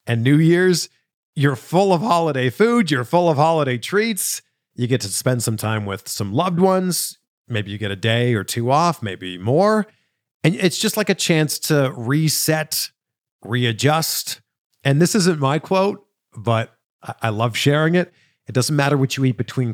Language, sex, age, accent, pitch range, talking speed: English, male, 40-59, American, 120-175 Hz, 180 wpm